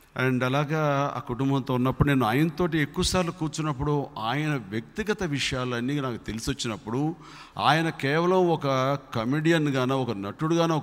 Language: Telugu